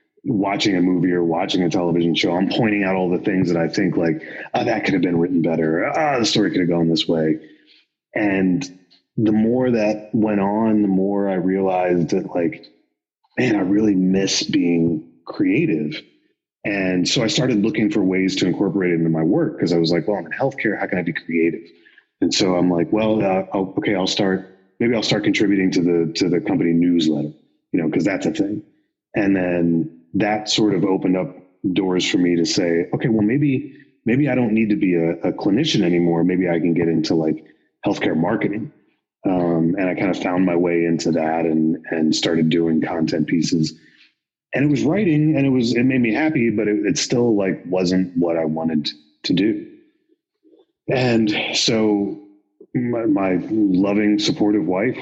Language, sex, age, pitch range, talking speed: English, male, 30-49, 85-105 Hz, 195 wpm